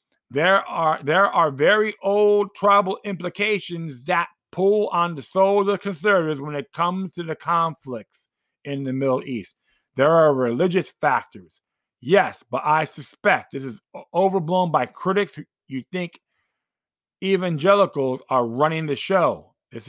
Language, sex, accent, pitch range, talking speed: English, male, American, 145-195 Hz, 140 wpm